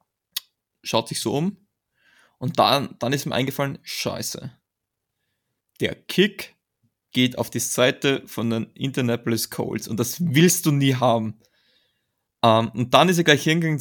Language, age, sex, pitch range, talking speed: German, 20-39, male, 120-145 Hz, 150 wpm